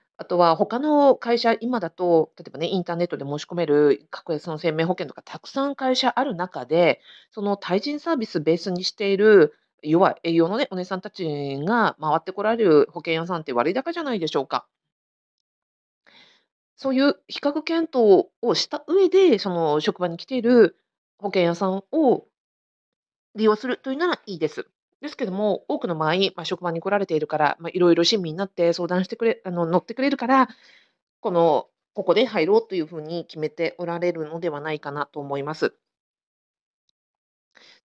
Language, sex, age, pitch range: Japanese, female, 40-59, 165-235 Hz